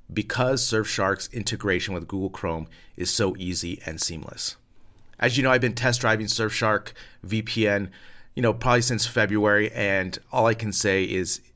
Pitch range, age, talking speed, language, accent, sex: 95-120 Hz, 30-49, 160 wpm, English, American, male